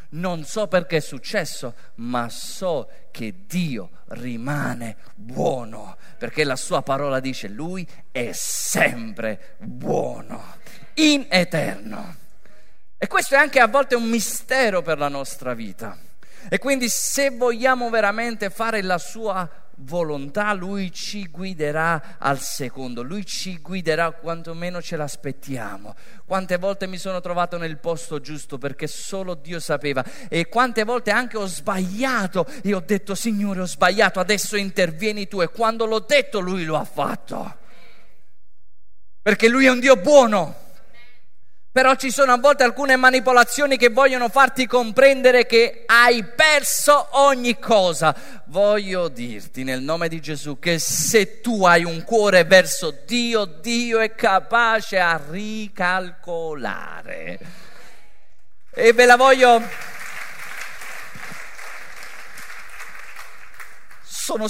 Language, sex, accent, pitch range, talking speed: Italian, male, native, 155-235 Hz, 125 wpm